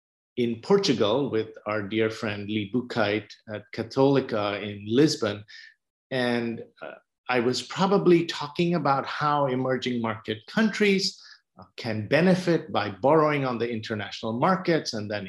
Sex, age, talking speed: male, 50-69, 135 wpm